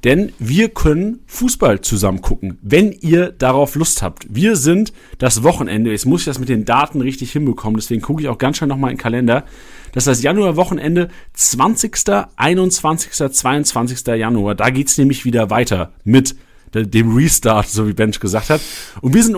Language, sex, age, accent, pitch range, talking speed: German, male, 40-59, German, 115-150 Hz, 185 wpm